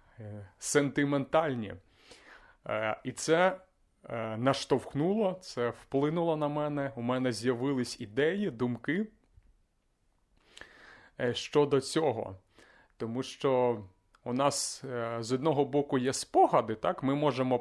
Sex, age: male, 30-49